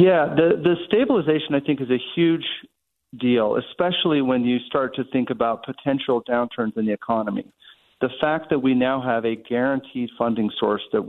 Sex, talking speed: male, 180 wpm